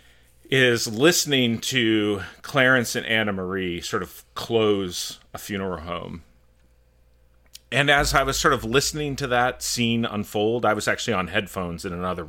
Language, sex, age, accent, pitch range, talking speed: English, male, 40-59, American, 90-130 Hz, 150 wpm